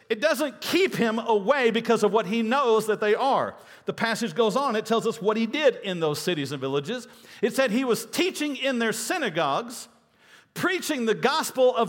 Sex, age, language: male, 50-69, English